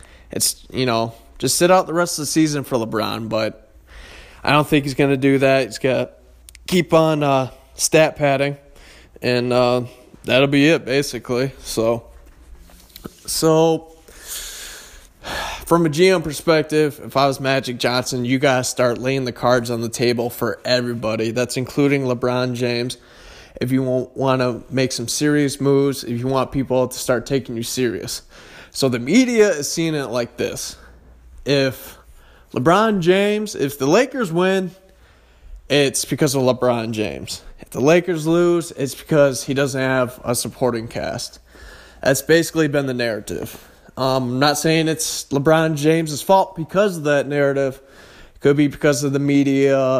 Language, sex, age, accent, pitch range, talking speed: English, male, 20-39, American, 120-145 Hz, 165 wpm